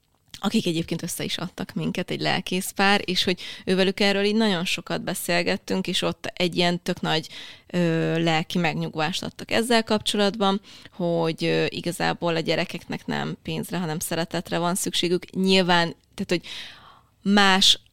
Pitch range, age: 160-195 Hz, 20-39